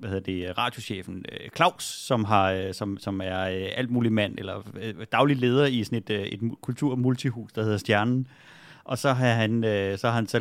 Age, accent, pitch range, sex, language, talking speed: 30-49, native, 100-130 Hz, male, Danish, 190 wpm